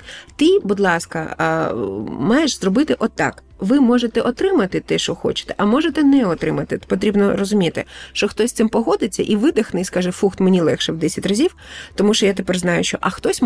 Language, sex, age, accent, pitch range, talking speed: Ukrainian, female, 30-49, native, 185-245 Hz, 185 wpm